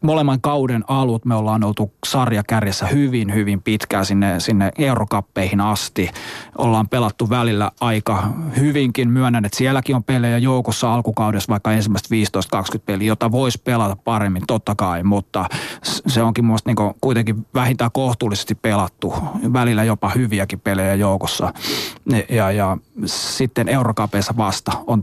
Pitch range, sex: 105-125 Hz, male